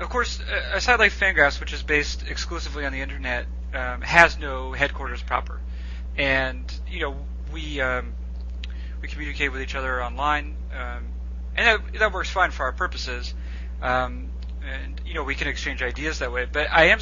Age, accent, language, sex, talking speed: 30-49, American, English, male, 180 wpm